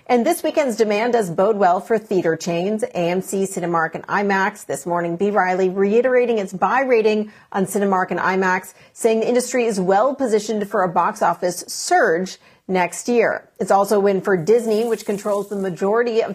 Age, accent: 40-59, American